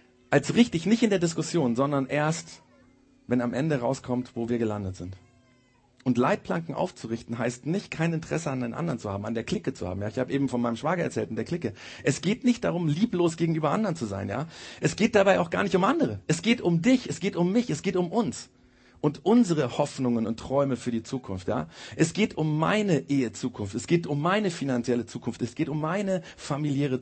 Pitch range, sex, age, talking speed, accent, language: 120-170 Hz, male, 40-59, 220 wpm, German, German